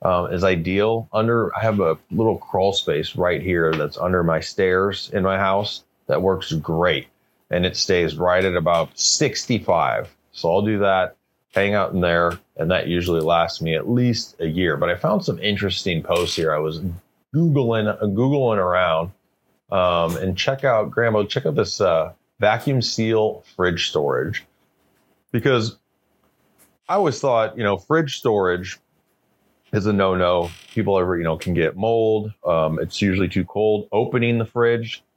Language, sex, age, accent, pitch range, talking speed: English, male, 30-49, American, 85-110 Hz, 165 wpm